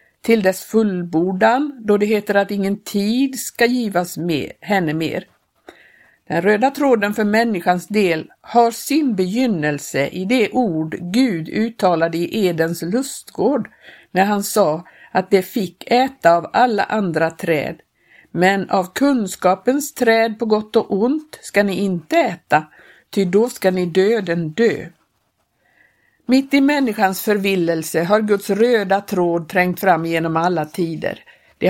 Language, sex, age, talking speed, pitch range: Swedish, female, 50-69, 140 wpm, 175-230 Hz